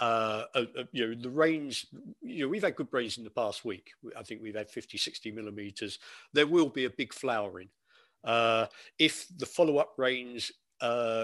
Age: 50-69